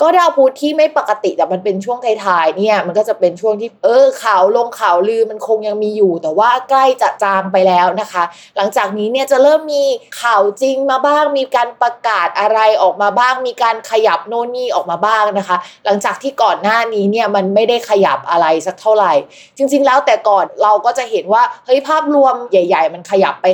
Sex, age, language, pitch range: female, 20-39, Thai, 195-260 Hz